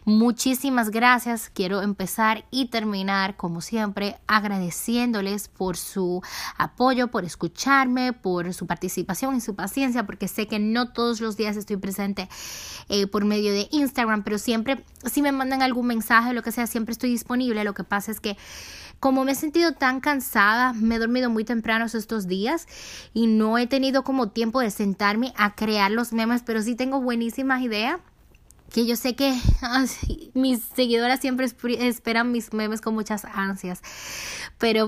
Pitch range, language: 200-250 Hz, Spanish